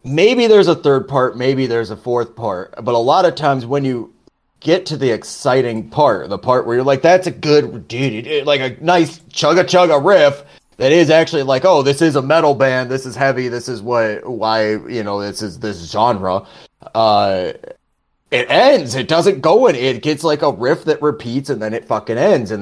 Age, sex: 30-49, male